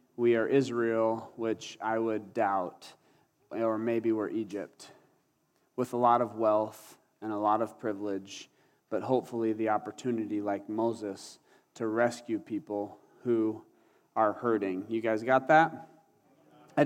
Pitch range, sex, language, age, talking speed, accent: 115-150 Hz, male, English, 30-49, 135 wpm, American